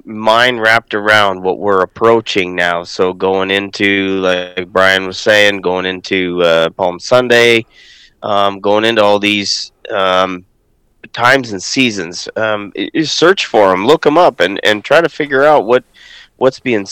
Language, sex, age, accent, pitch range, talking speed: English, male, 30-49, American, 95-110 Hz, 155 wpm